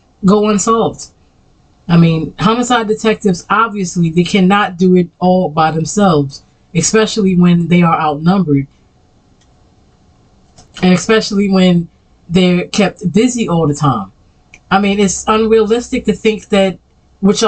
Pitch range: 170-205 Hz